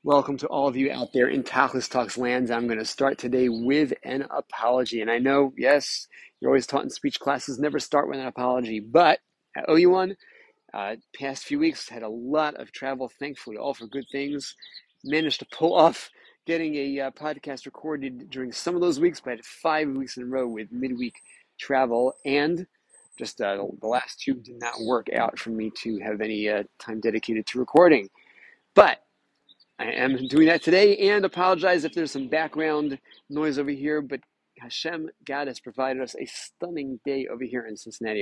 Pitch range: 125-155 Hz